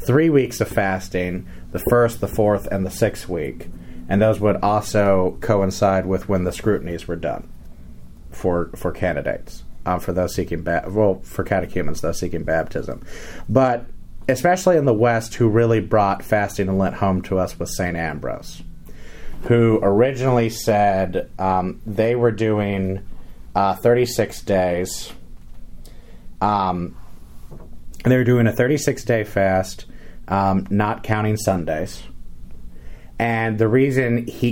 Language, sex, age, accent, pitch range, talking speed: English, male, 30-49, American, 90-110 Hz, 135 wpm